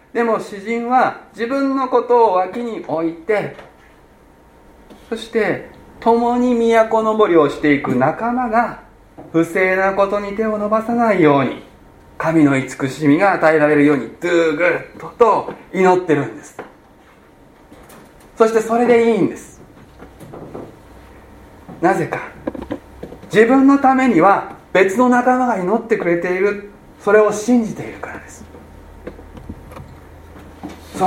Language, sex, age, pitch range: Japanese, male, 40-59, 145-240 Hz